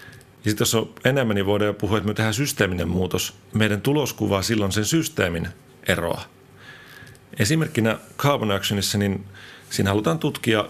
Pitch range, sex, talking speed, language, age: 95-115 Hz, male, 150 wpm, Finnish, 40-59